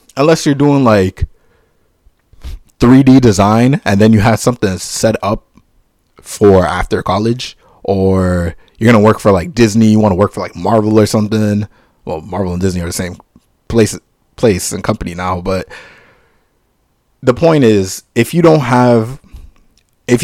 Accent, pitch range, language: American, 95-140 Hz, English